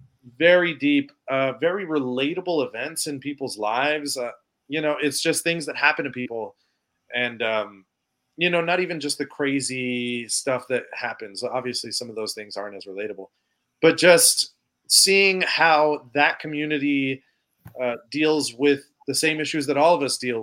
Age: 30-49